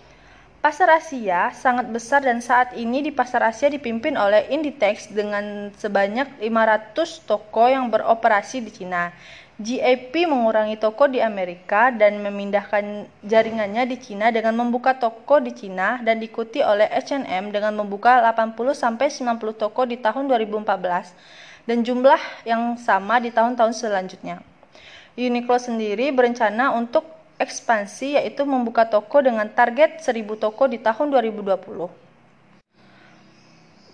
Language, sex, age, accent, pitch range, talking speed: Indonesian, female, 20-39, native, 210-255 Hz, 120 wpm